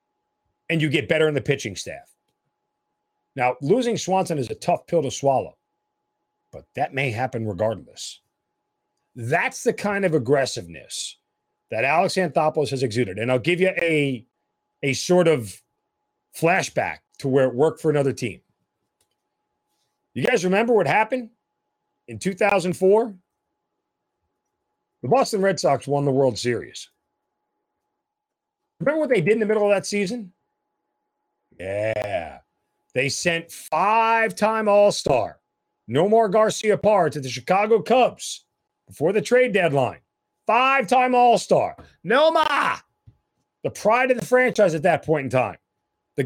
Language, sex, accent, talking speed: English, male, American, 130 wpm